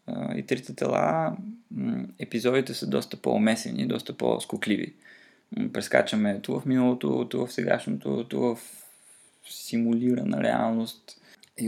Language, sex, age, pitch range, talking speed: Bulgarian, male, 20-39, 110-145 Hz, 115 wpm